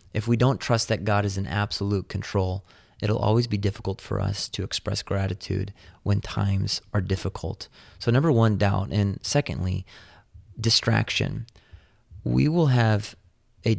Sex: male